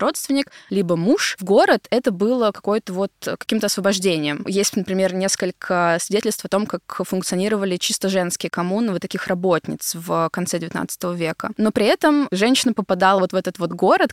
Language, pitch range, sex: Russian, 190-235 Hz, female